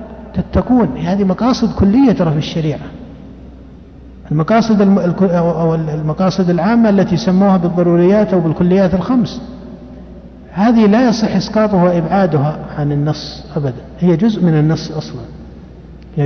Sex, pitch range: male, 165-210 Hz